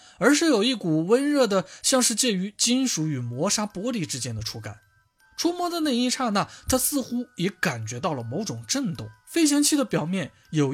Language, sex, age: Chinese, male, 20-39